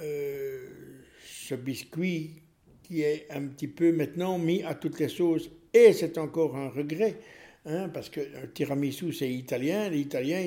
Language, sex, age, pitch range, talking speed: French, male, 60-79, 135-175 Hz, 160 wpm